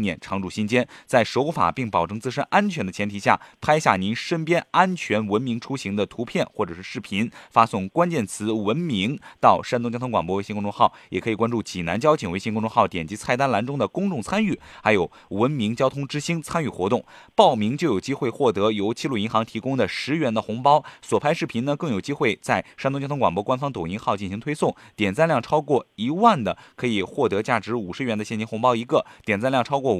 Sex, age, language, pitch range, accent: male, 20-39, Chinese, 105-145 Hz, native